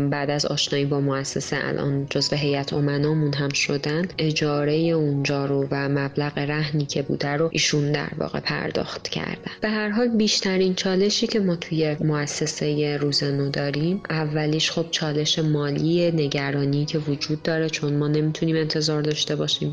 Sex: female